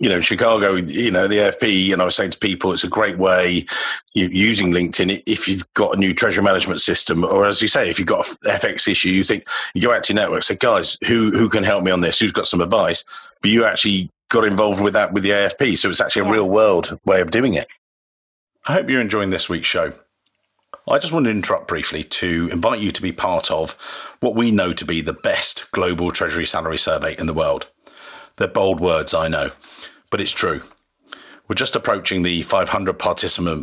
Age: 40-59